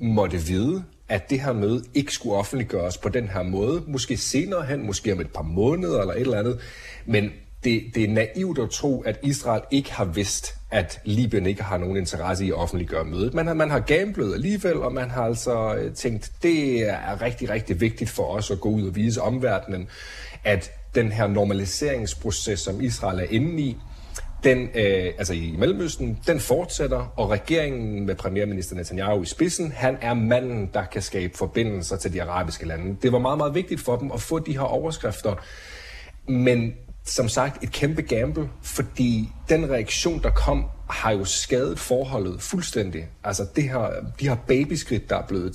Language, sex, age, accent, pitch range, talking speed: Danish, male, 40-59, native, 95-130 Hz, 190 wpm